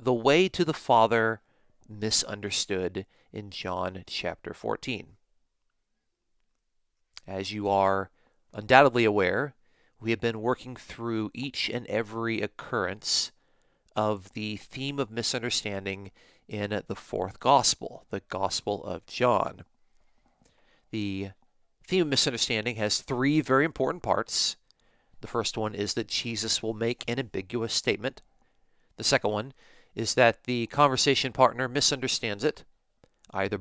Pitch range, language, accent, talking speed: 100-125 Hz, English, American, 120 wpm